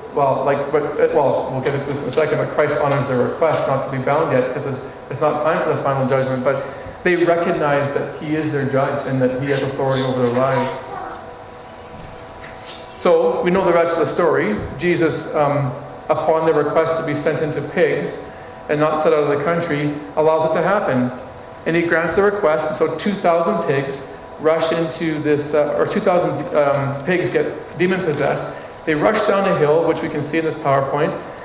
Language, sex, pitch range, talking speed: English, male, 140-165 Hz, 200 wpm